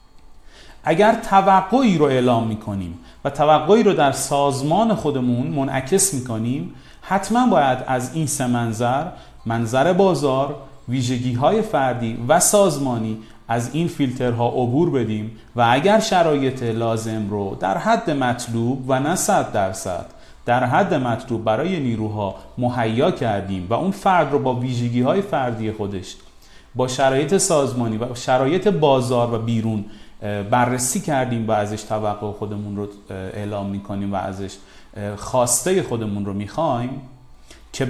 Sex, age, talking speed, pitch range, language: male, 40-59, 130 wpm, 110-150 Hz, Persian